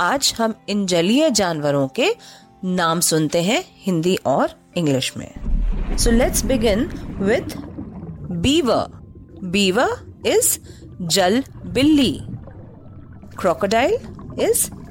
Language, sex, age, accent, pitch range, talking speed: Hindi, female, 30-49, native, 160-270 Hz, 90 wpm